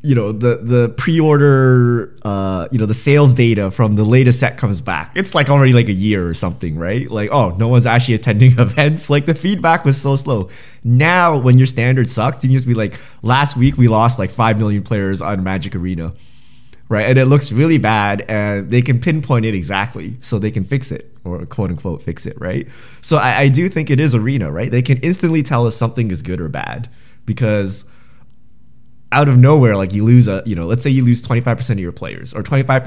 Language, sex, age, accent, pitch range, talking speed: English, male, 20-39, American, 105-130 Hz, 225 wpm